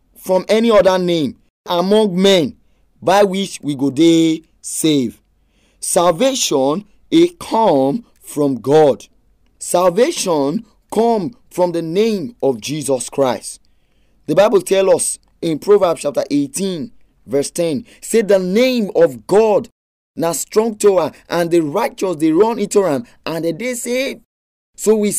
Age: 30-49